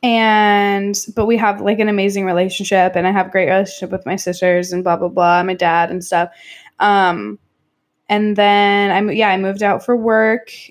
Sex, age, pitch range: female, 20-39, 185-215 Hz